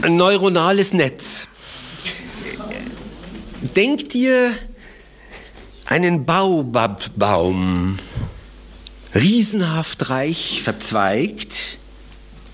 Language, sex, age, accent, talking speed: German, male, 60-79, German, 50 wpm